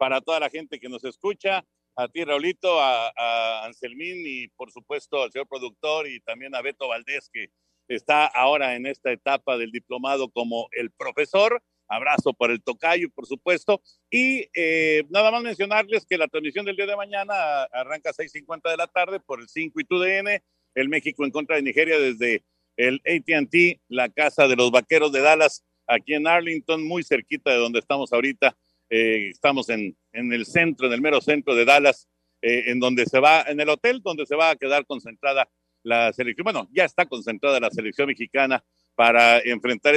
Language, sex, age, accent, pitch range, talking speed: Spanish, male, 50-69, Mexican, 120-160 Hz, 190 wpm